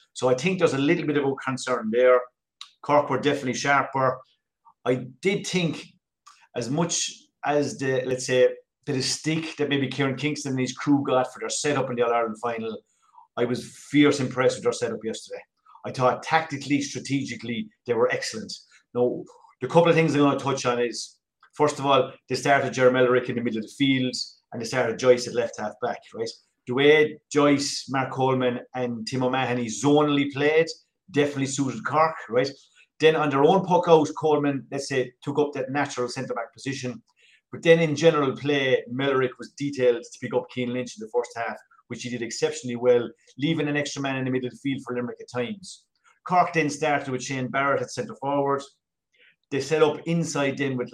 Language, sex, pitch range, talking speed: English, male, 125-150 Hz, 200 wpm